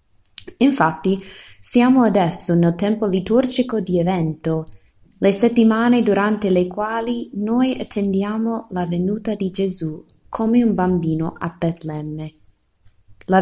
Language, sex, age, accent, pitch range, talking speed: Italian, female, 20-39, native, 155-215 Hz, 110 wpm